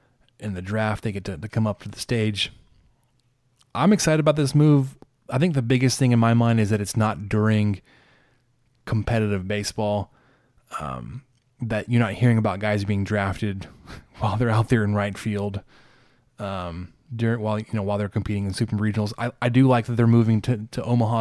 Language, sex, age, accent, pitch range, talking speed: English, male, 20-39, American, 105-130 Hz, 195 wpm